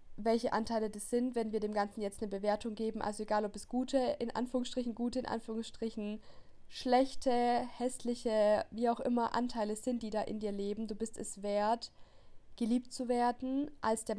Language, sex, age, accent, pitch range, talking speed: German, female, 20-39, German, 210-240 Hz, 180 wpm